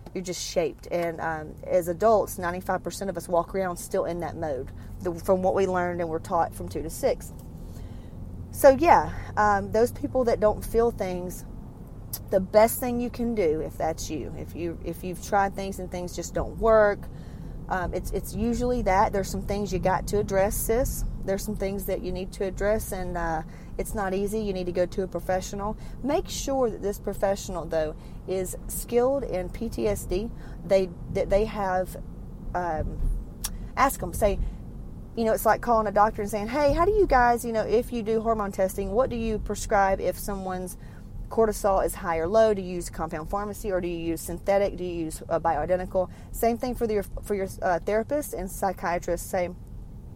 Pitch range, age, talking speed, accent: 175-215 Hz, 30-49, 195 wpm, American